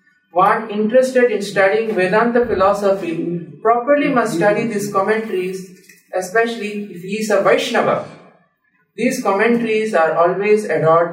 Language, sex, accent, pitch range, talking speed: English, male, Indian, 185-235 Hz, 120 wpm